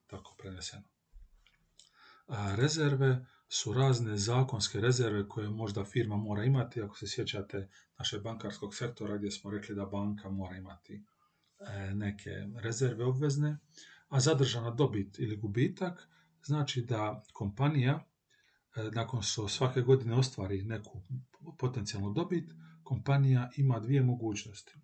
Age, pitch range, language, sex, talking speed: 40-59, 105-135 Hz, Croatian, male, 120 wpm